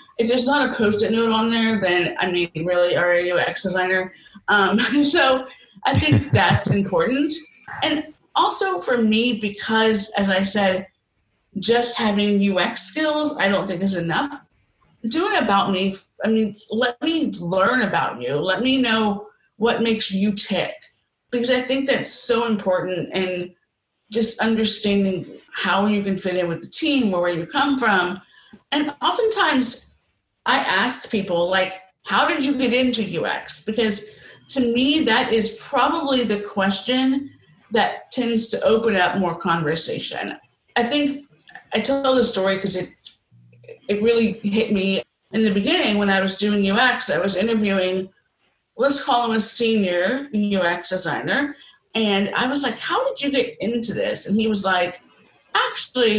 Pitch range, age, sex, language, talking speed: 190-255 Hz, 30-49, female, English, 160 wpm